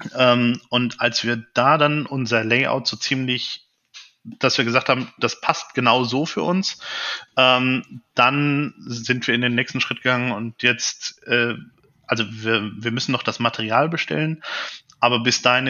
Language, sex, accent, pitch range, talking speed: German, male, German, 115-130 Hz, 155 wpm